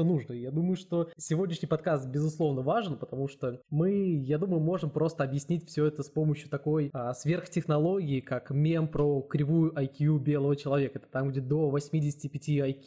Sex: male